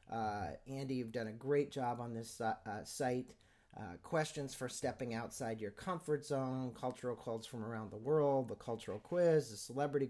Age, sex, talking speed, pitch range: 40-59, male, 185 wpm, 120-155 Hz